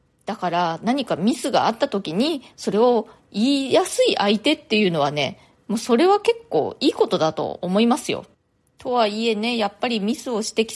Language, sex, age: Japanese, female, 20-39